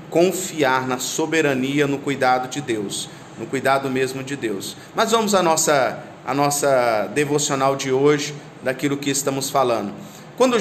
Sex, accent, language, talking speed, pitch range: male, Brazilian, Portuguese, 140 wpm, 145-175 Hz